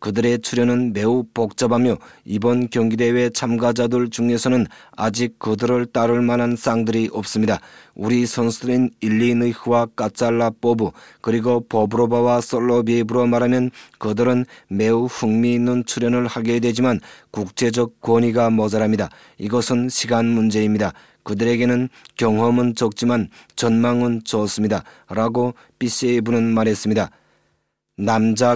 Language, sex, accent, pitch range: Korean, male, native, 110-120 Hz